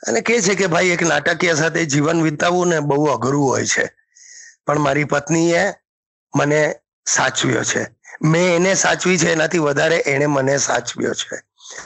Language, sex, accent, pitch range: English, male, Indian, 145-170 Hz